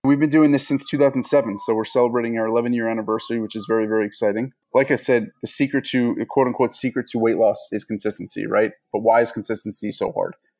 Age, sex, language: 30-49, male, English